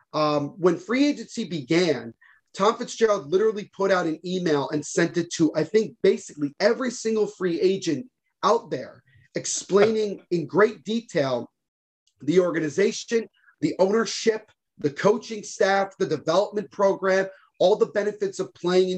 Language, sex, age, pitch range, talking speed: English, male, 30-49, 160-210 Hz, 140 wpm